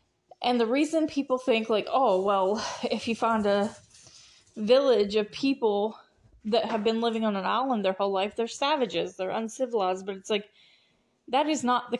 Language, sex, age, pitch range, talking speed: English, female, 20-39, 200-245 Hz, 180 wpm